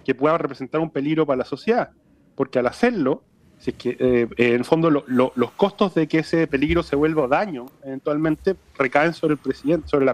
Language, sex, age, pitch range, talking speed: Spanish, male, 30-49, 130-155 Hz, 205 wpm